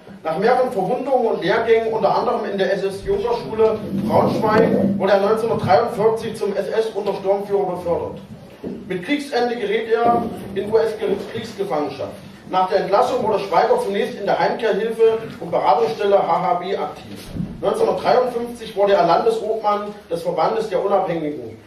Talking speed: 120 wpm